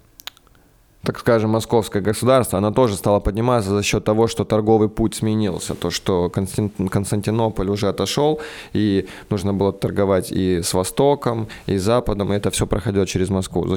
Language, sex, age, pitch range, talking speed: Russian, male, 20-39, 100-115 Hz, 160 wpm